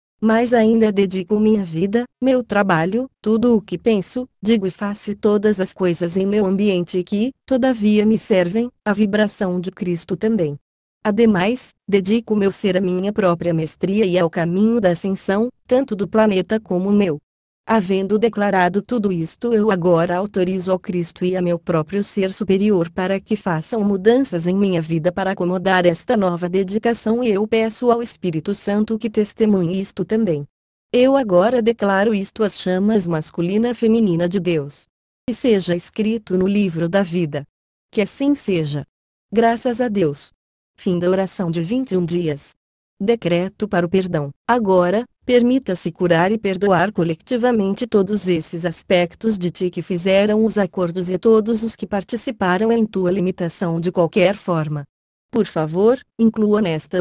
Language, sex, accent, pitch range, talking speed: Portuguese, female, Brazilian, 180-220 Hz, 155 wpm